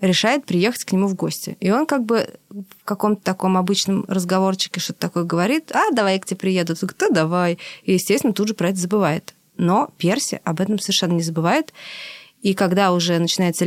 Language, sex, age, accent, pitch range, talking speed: Russian, female, 20-39, native, 170-200 Hz, 200 wpm